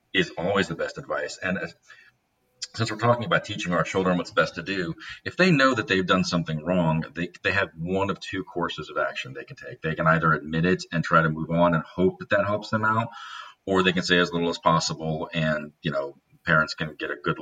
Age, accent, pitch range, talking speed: 40-59, American, 80-100 Hz, 245 wpm